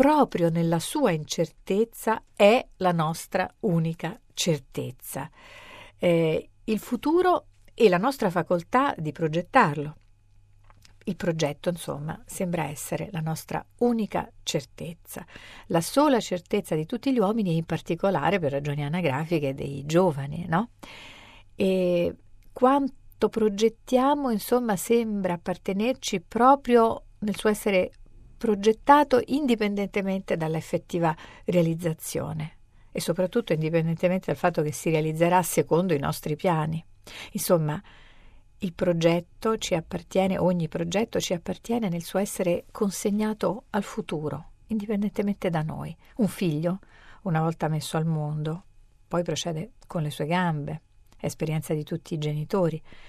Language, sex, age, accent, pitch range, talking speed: Italian, female, 50-69, native, 160-210 Hz, 120 wpm